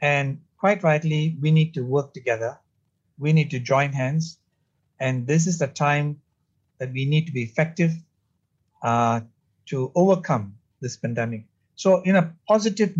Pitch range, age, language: 125-180 Hz, 60-79, English